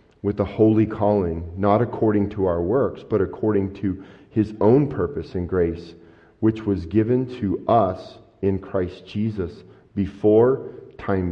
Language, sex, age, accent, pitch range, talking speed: English, male, 40-59, American, 95-110 Hz, 145 wpm